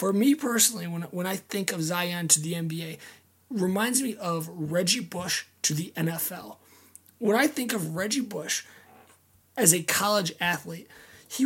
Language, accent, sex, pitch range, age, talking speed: English, American, male, 170-215 Hz, 20-39, 160 wpm